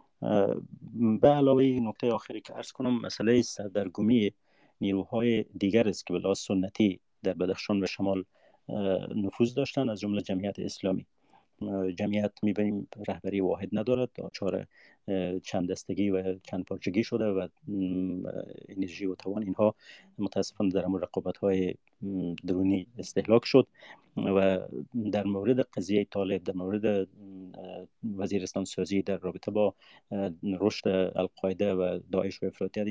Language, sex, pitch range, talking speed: Persian, male, 95-105 Hz, 125 wpm